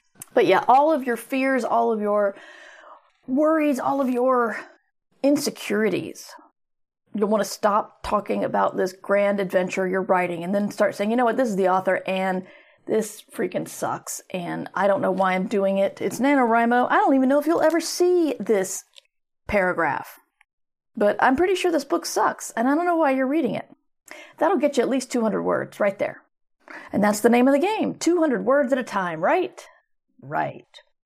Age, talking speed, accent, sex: 40-59, 190 wpm, American, female